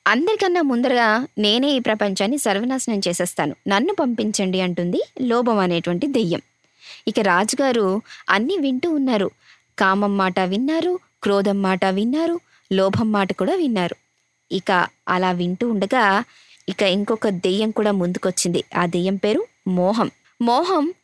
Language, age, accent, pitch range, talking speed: Telugu, 20-39, native, 195-265 Hz, 120 wpm